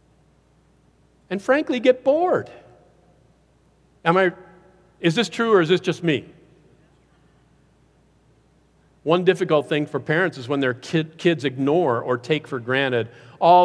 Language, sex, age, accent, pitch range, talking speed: English, male, 50-69, American, 125-160 Hz, 125 wpm